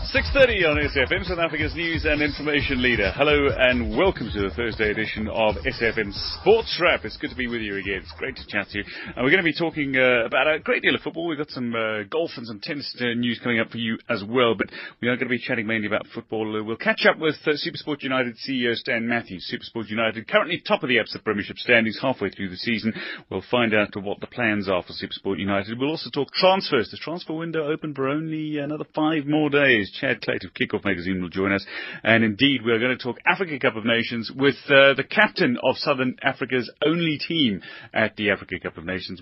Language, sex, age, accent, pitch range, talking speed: English, male, 30-49, British, 110-150 Hz, 240 wpm